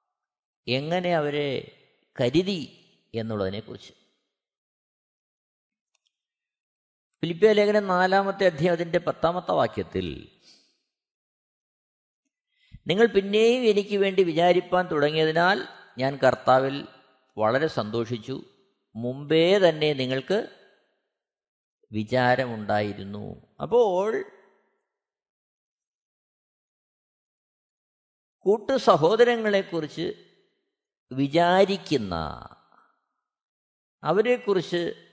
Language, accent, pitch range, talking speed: Malayalam, native, 130-215 Hz, 50 wpm